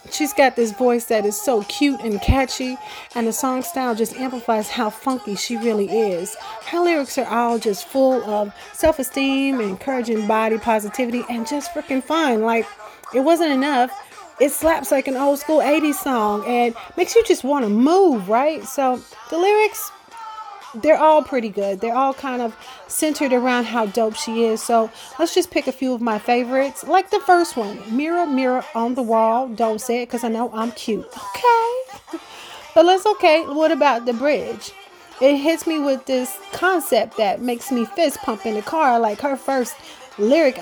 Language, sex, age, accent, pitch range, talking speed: English, female, 40-59, American, 225-305 Hz, 185 wpm